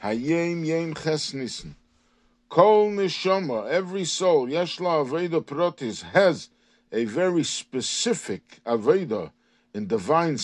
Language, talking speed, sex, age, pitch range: English, 100 wpm, male, 50-69, 125-210 Hz